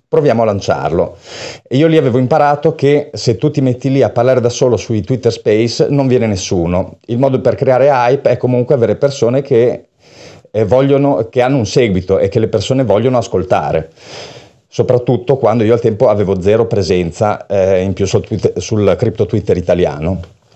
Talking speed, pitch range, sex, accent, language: 180 wpm, 100-130 Hz, male, native, Italian